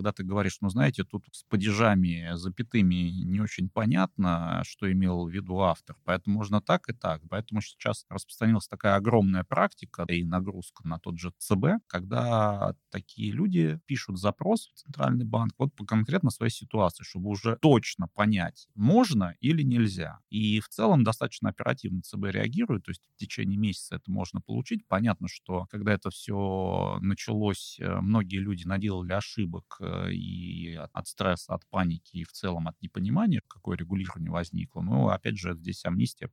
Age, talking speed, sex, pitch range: 30-49, 160 wpm, male, 90-115 Hz